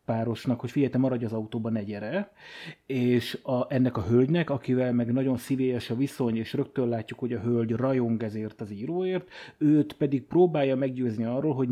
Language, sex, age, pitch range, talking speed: Hungarian, male, 30-49, 115-145 Hz, 185 wpm